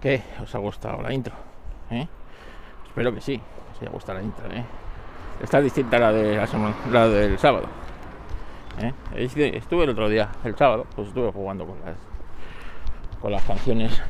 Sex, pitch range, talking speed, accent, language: male, 85-110 Hz, 170 wpm, Spanish, Spanish